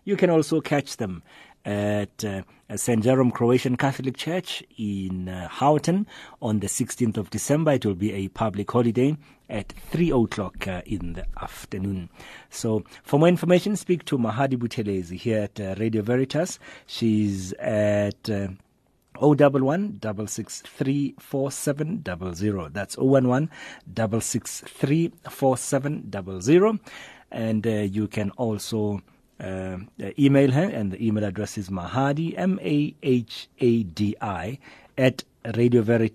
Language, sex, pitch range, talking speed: English, male, 105-145 Hz, 145 wpm